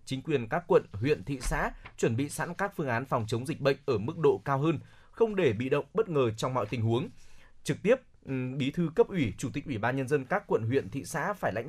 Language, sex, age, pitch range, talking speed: Vietnamese, male, 20-39, 115-160 Hz, 260 wpm